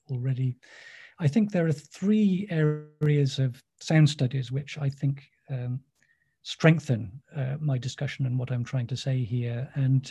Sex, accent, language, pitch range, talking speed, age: male, British, English, 130-145 Hz, 155 wpm, 40-59